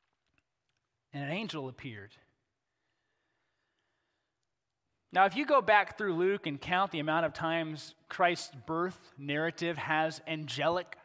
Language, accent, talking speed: English, American, 120 wpm